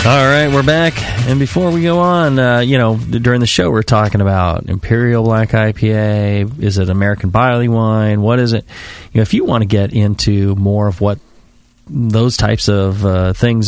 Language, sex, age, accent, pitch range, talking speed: English, male, 30-49, American, 100-120 Hz, 200 wpm